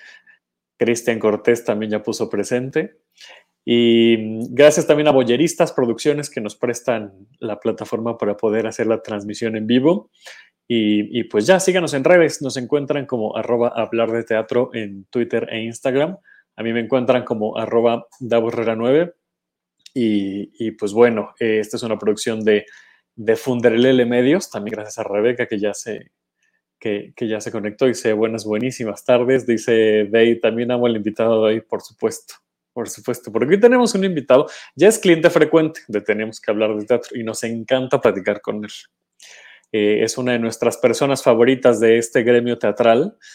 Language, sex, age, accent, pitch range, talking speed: Spanish, male, 20-39, Mexican, 110-125 Hz, 170 wpm